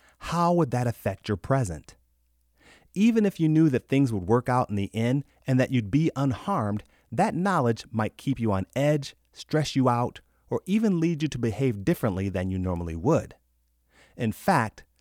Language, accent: English, American